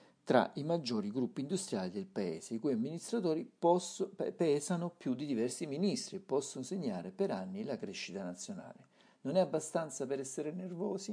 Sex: male